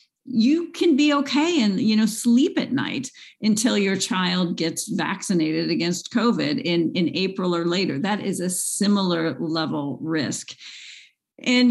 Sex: female